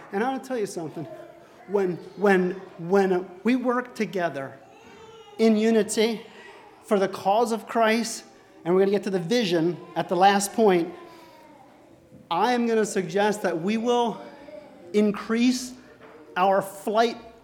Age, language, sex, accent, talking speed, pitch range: 40-59, English, male, American, 150 wpm, 170-225 Hz